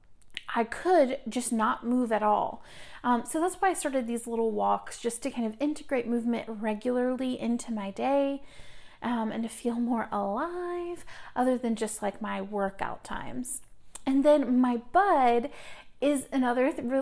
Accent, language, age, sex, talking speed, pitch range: American, English, 30-49, female, 160 wpm, 220-270 Hz